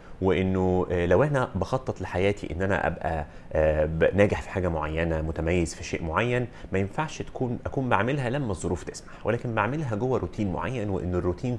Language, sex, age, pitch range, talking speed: Arabic, male, 30-49, 85-110 Hz, 165 wpm